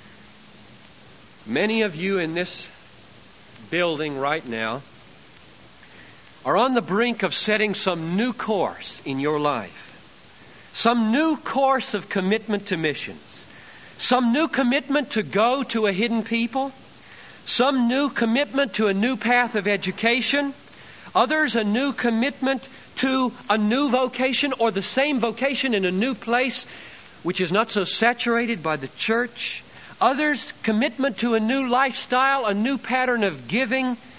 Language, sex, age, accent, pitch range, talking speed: English, male, 60-79, American, 185-255 Hz, 140 wpm